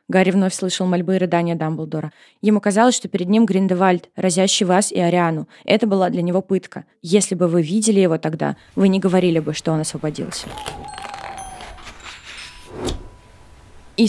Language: Russian